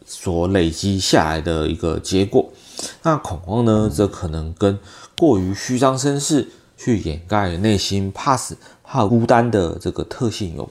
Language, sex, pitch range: Chinese, male, 85-115 Hz